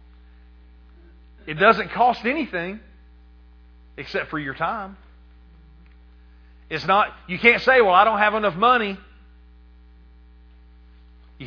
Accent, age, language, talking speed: American, 40-59, English, 105 wpm